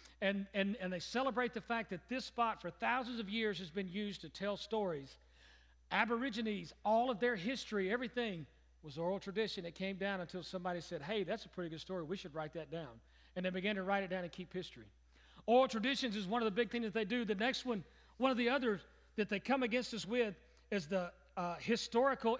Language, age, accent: English, 40-59, American